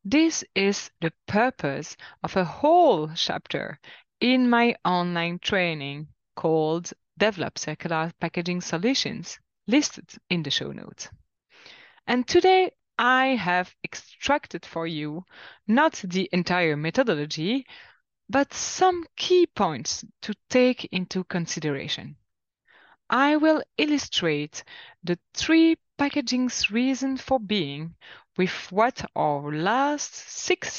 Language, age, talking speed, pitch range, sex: English, 30-49, 105 wpm, 165-255 Hz, female